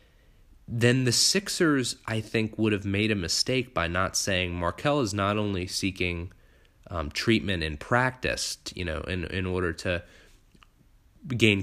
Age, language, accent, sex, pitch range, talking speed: 20-39, English, American, male, 90-110 Hz, 150 wpm